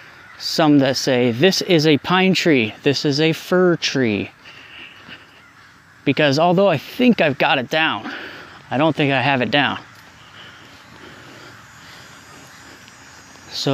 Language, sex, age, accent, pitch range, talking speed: English, male, 30-49, American, 115-165 Hz, 125 wpm